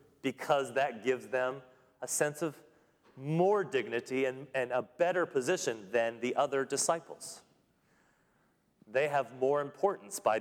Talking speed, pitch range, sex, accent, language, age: 135 wpm, 130-170 Hz, male, American, English, 30-49